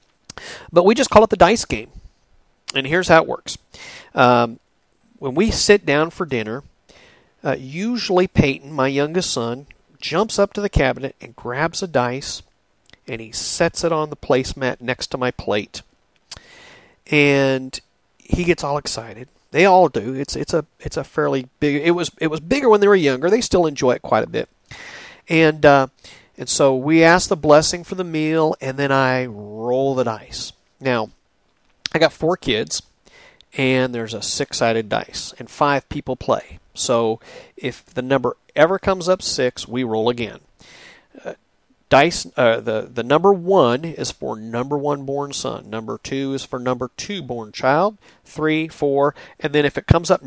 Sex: male